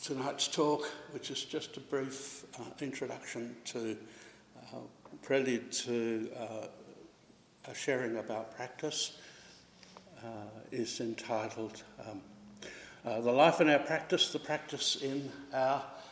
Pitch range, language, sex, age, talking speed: 115-140 Hz, English, male, 60-79, 120 wpm